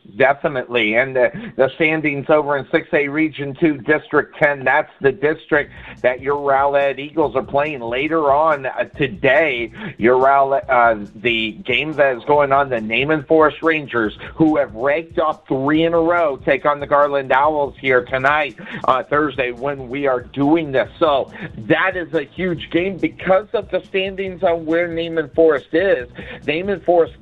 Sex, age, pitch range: male, 50-69, 130-160 Hz